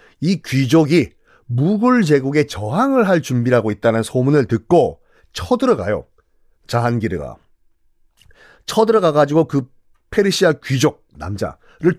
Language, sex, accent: Korean, male, native